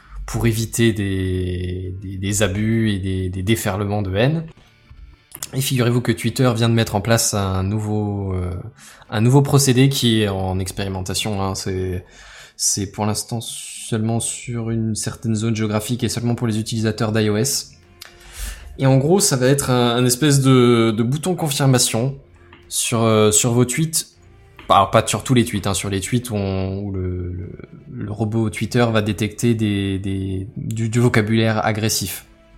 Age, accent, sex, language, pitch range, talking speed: 20-39, French, male, French, 95-125 Hz, 155 wpm